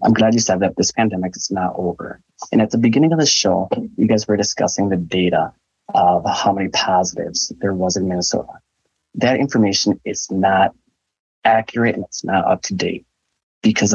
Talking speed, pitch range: 185 wpm, 95-110 Hz